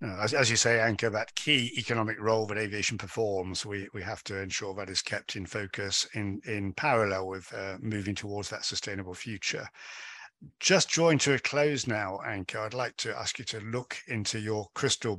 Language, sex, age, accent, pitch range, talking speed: English, male, 50-69, British, 105-120 Hz, 195 wpm